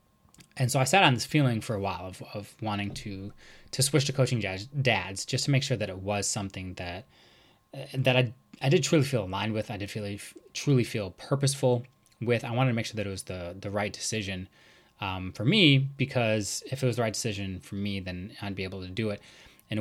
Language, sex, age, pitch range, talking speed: English, male, 20-39, 100-130 Hz, 225 wpm